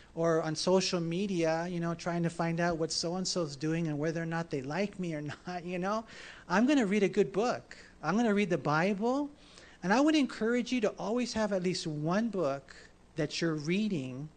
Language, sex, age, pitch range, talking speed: English, male, 40-59, 160-205 Hz, 220 wpm